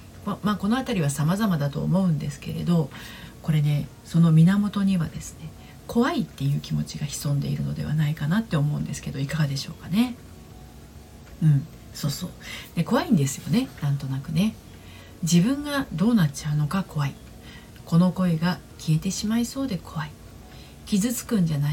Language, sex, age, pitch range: Japanese, female, 40-59, 150-220 Hz